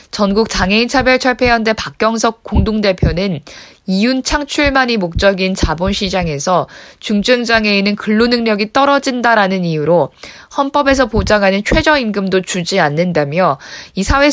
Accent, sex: native, female